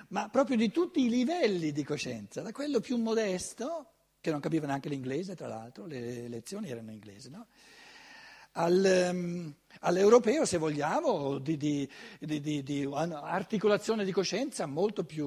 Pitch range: 155-235 Hz